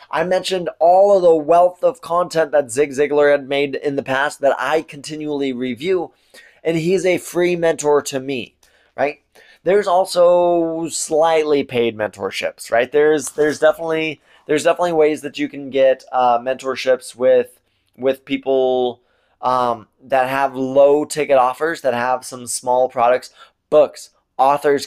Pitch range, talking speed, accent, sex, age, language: 120-150 Hz, 150 wpm, American, male, 20-39, English